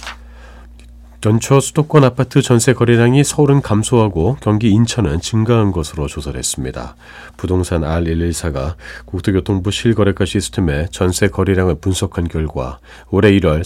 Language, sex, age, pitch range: Korean, male, 40-59, 75-110 Hz